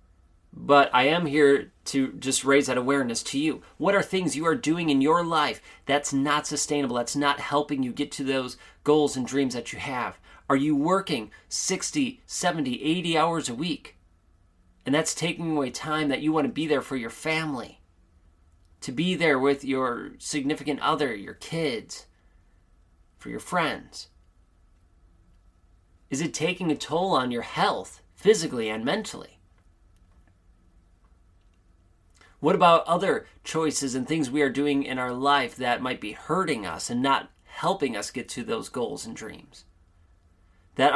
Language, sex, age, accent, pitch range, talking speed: English, male, 30-49, American, 85-145 Hz, 160 wpm